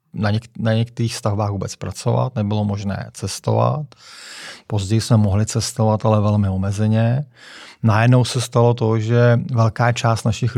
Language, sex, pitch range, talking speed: Czech, male, 105-125 Hz, 140 wpm